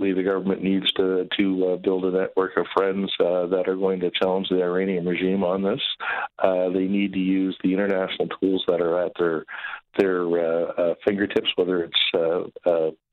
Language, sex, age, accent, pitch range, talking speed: English, male, 50-69, American, 95-105 Hz, 185 wpm